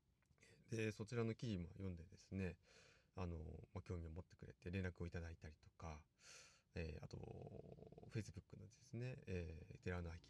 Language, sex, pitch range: Japanese, male, 85-105 Hz